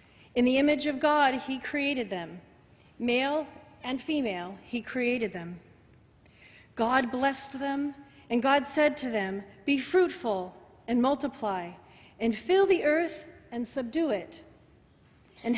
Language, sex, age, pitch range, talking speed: English, female, 40-59, 235-290 Hz, 130 wpm